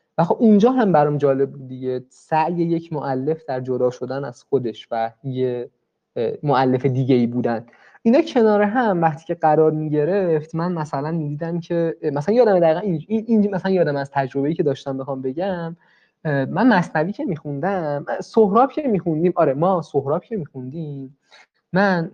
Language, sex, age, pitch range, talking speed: Persian, male, 20-39, 130-175 Hz, 170 wpm